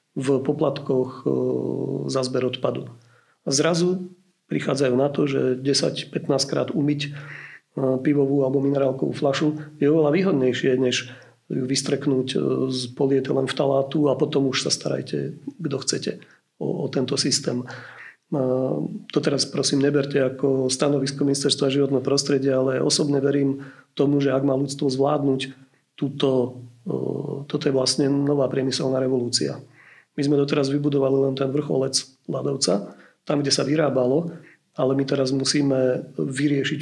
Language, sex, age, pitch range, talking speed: Slovak, male, 40-59, 130-145 Hz, 130 wpm